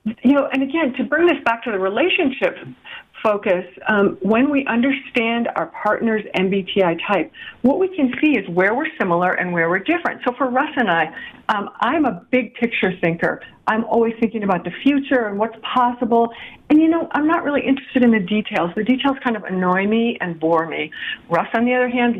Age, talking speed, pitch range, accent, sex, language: 50-69, 205 wpm, 195-275 Hz, American, female, English